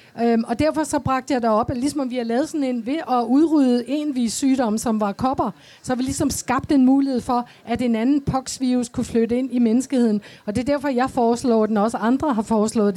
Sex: female